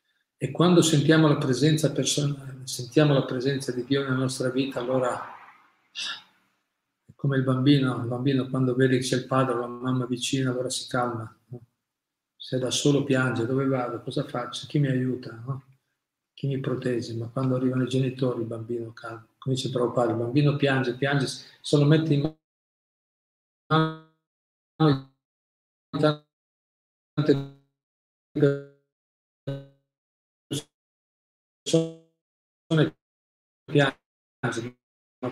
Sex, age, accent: male, 40-59, native